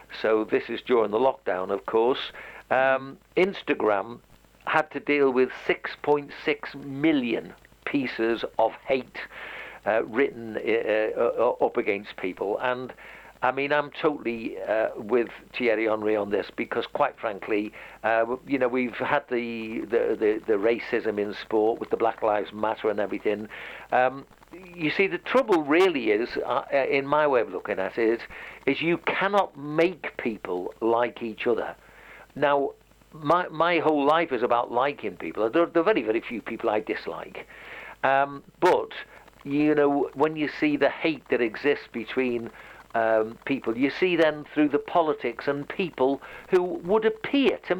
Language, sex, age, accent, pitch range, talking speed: English, male, 60-79, British, 125-185 Hz, 160 wpm